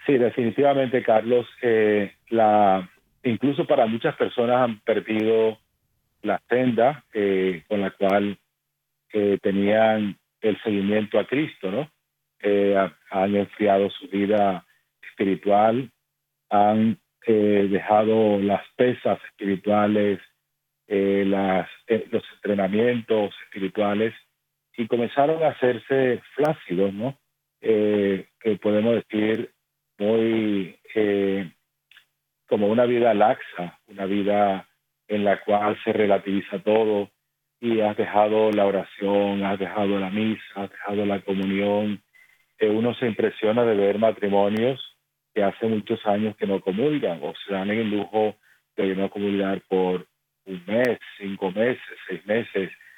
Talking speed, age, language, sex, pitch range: 125 wpm, 40-59, Spanish, male, 100-110 Hz